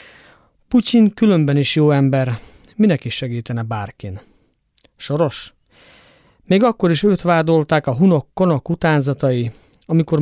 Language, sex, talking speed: Hungarian, male, 110 wpm